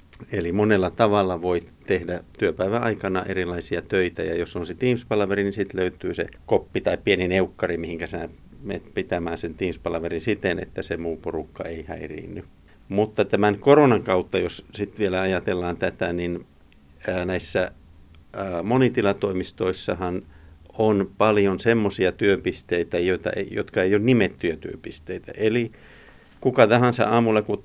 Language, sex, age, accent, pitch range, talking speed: Finnish, male, 50-69, native, 90-110 Hz, 130 wpm